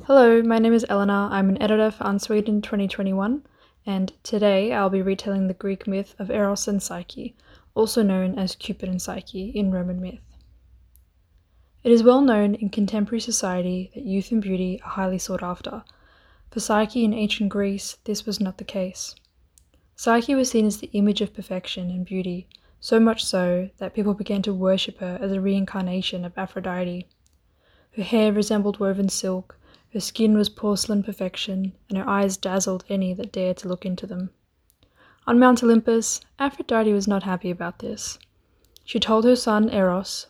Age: 10-29